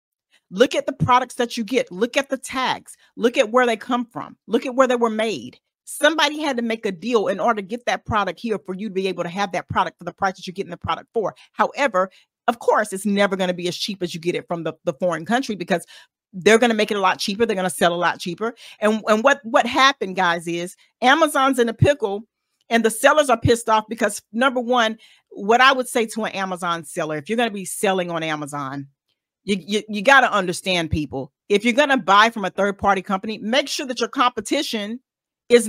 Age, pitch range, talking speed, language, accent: 40-59, 190-250 Hz, 250 wpm, English, American